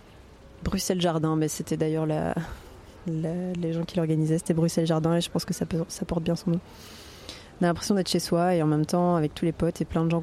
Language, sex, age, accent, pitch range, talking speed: French, female, 20-39, French, 160-180 Hz, 250 wpm